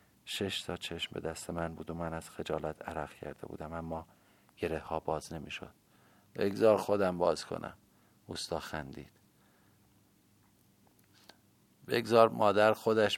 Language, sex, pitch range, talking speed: Persian, male, 85-100 Hz, 125 wpm